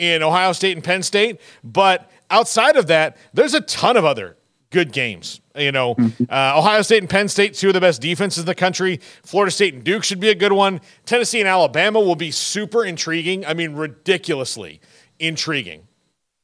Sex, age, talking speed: male, 40-59, 195 wpm